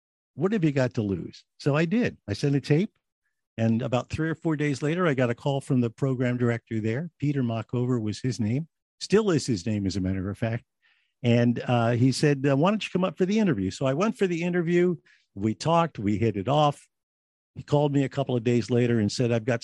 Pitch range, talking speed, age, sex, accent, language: 115-155 Hz, 240 wpm, 50-69, male, American, English